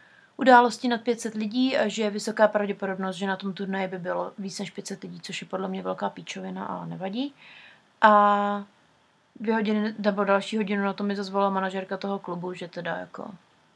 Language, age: Czech, 30-49